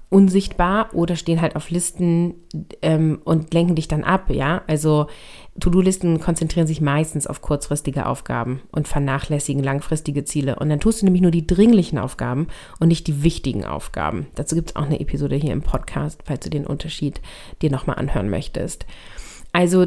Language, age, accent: German, 30-49, German